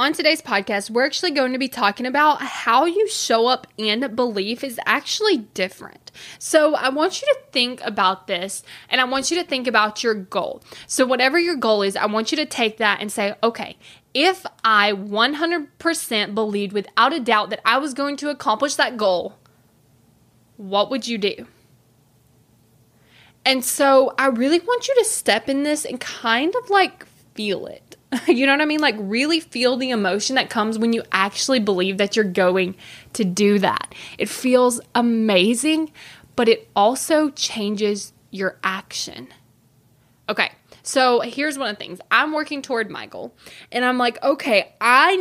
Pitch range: 200-280 Hz